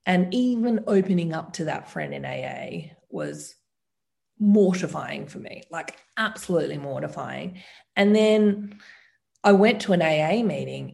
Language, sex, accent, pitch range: English, female, Australian, 160-215 Hz